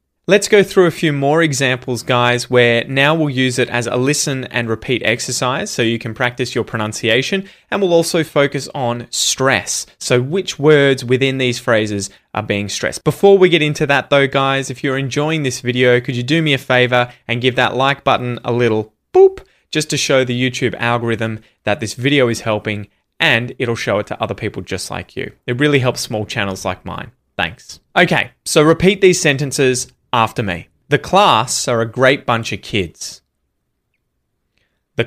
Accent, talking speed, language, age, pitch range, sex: Australian, 190 wpm, English, 20-39, 110-140 Hz, male